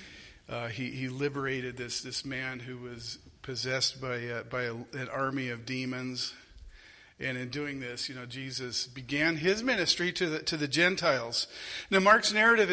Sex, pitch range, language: male, 125-155 Hz, English